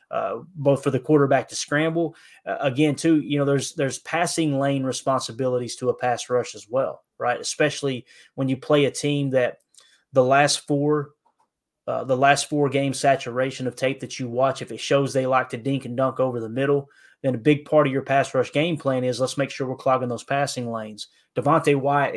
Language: English